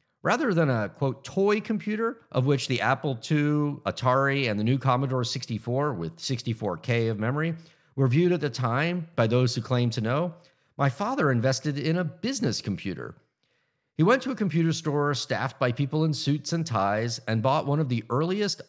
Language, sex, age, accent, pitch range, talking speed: English, male, 50-69, American, 125-170 Hz, 185 wpm